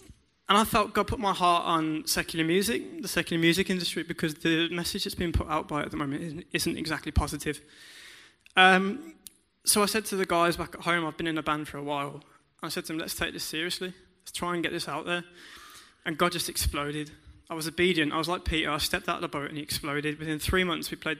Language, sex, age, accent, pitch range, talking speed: English, male, 20-39, British, 155-180 Hz, 245 wpm